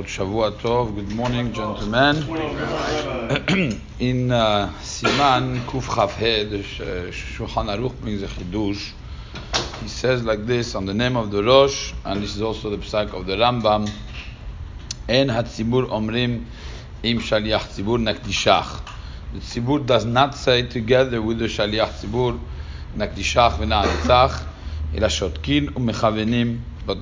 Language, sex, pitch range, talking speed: English, male, 100-135 Hz, 130 wpm